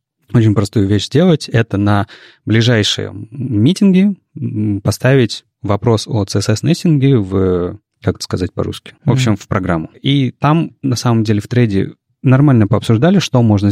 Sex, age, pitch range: male, 30-49, 100-130 Hz